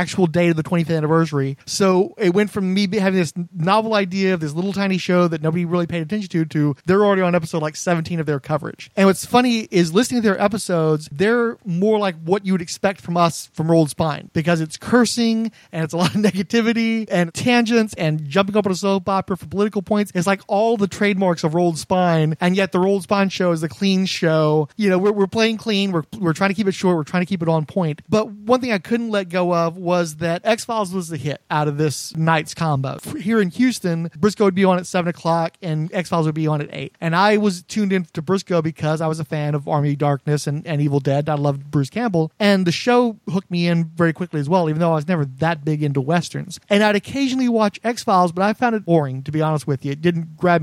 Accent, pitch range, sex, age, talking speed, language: American, 160-200 Hz, male, 30-49, 250 wpm, English